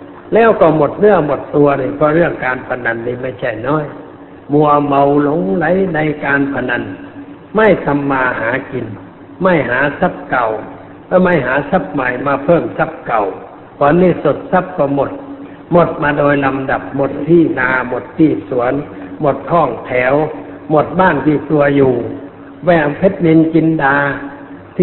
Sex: male